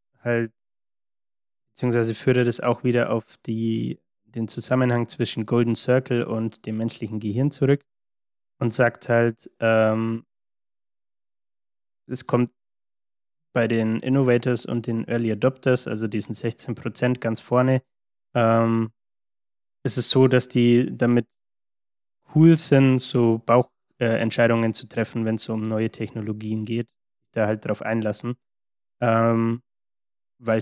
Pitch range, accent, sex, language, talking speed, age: 110-125 Hz, German, male, German, 125 wpm, 20-39